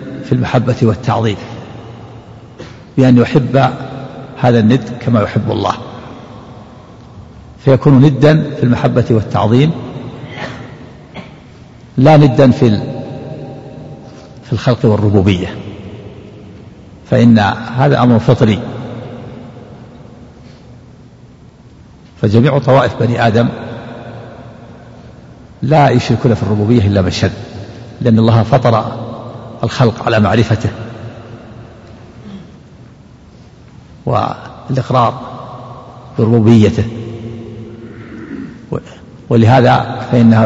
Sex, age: male, 50-69